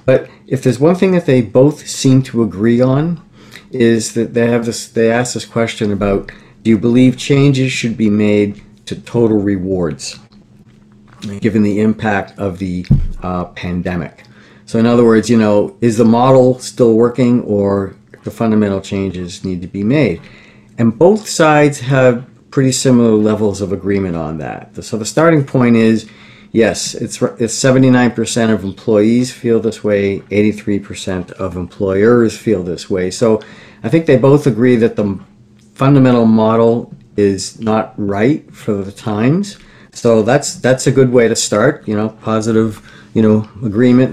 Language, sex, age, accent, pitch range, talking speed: English, male, 50-69, American, 105-125 Hz, 160 wpm